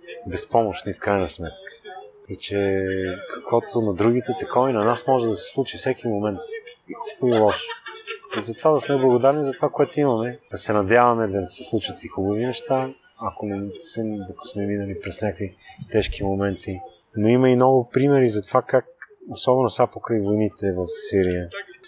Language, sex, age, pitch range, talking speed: Bulgarian, male, 30-49, 100-130 Hz, 175 wpm